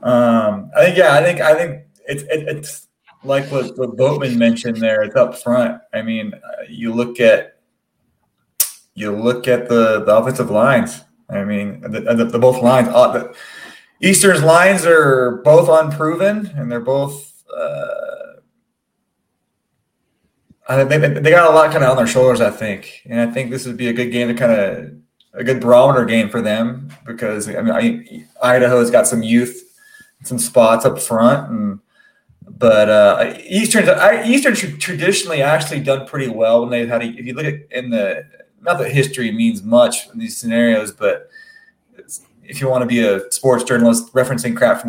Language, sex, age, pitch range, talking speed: English, male, 20-39, 120-195 Hz, 185 wpm